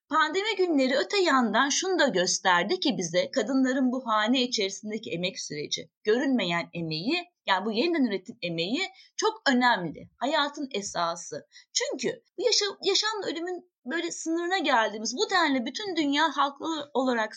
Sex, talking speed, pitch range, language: female, 135 wpm, 215-310 Hz, Turkish